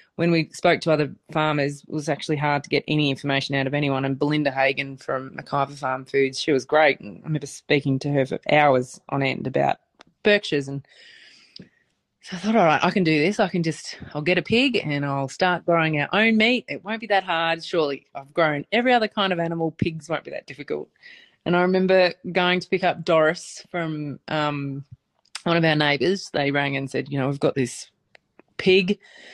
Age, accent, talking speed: 20-39, Australian, 215 wpm